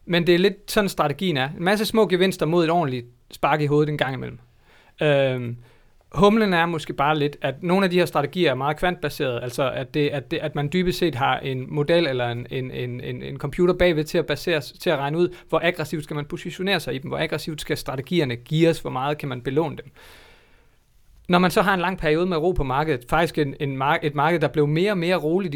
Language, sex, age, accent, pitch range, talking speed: Danish, male, 30-49, native, 140-170 Hz, 240 wpm